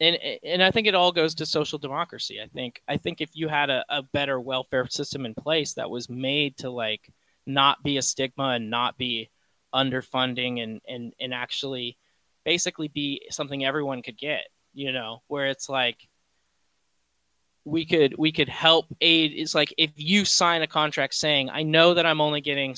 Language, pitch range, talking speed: English, 125-155 Hz, 190 wpm